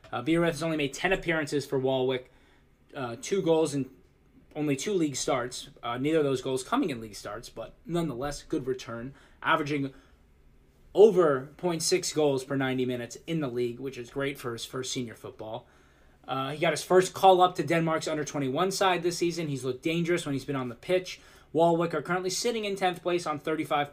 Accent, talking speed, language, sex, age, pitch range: American, 200 wpm, English, male, 20-39, 135-170 Hz